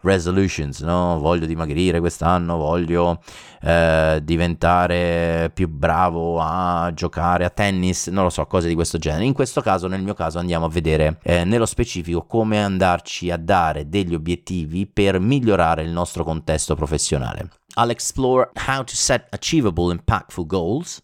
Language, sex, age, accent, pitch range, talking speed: Italian, male, 30-49, native, 80-100 Hz, 150 wpm